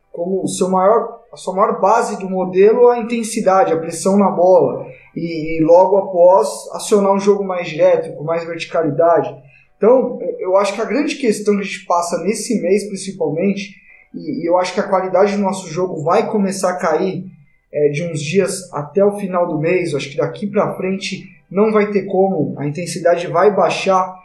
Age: 20-39